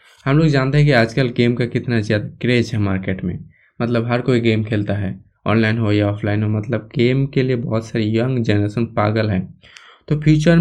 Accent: native